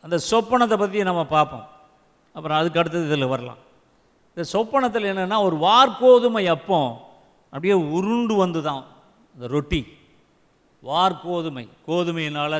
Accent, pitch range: native, 140-220 Hz